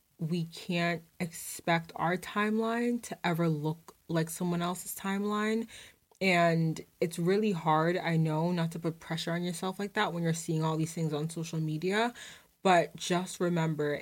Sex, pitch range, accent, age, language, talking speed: female, 165-195 Hz, American, 20-39, English, 165 wpm